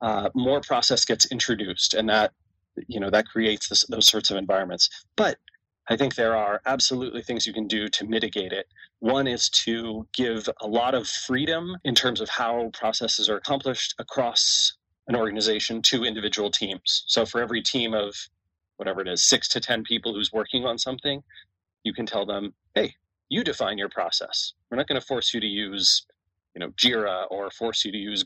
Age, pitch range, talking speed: 30-49, 100-120 Hz, 195 wpm